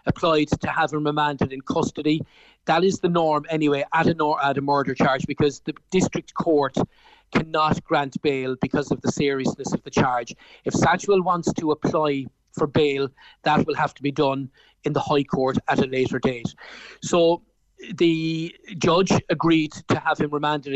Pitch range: 145-165 Hz